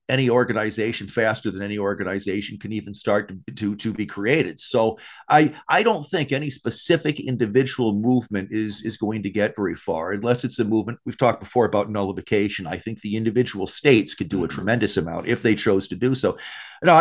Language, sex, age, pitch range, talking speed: English, male, 50-69, 110-145 Hz, 200 wpm